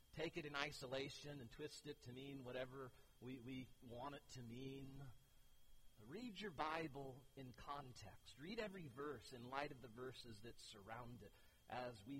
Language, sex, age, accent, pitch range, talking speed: English, male, 50-69, American, 115-175 Hz, 165 wpm